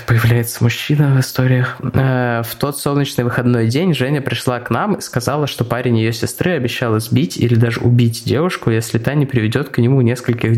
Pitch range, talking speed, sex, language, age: 115-130 Hz, 180 wpm, male, Russian, 20-39